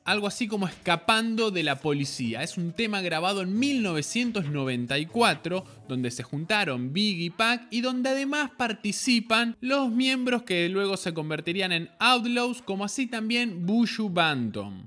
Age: 20-39